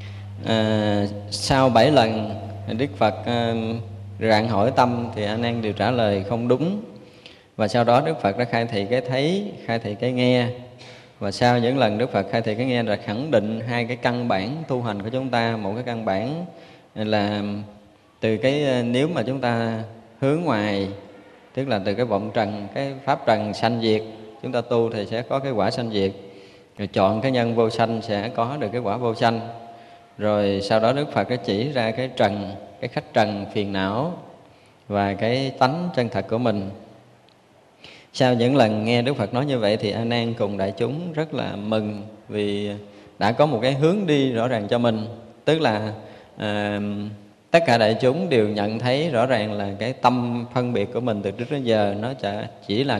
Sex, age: male, 20-39